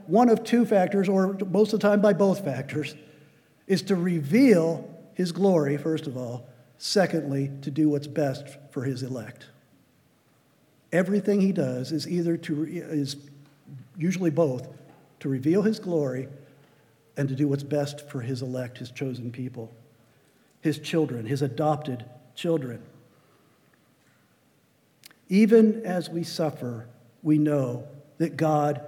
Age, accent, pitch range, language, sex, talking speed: 50-69, American, 140-200 Hz, English, male, 130 wpm